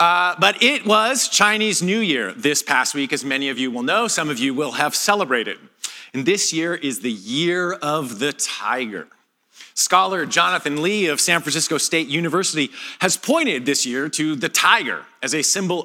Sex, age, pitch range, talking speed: male, 40-59, 135-195 Hz, 185 wpm